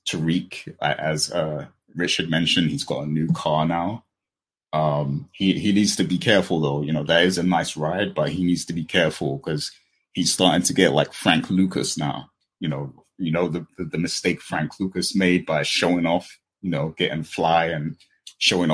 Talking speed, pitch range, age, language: 195 wpm, 75-90 Hz, 30-49, English